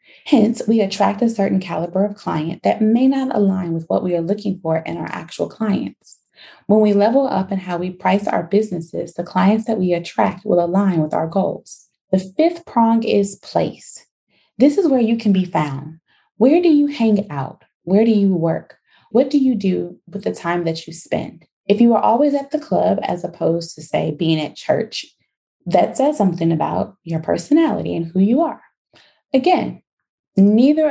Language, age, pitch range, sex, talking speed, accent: English, 20-39, 170-230 Hz, female, 190 wpm, American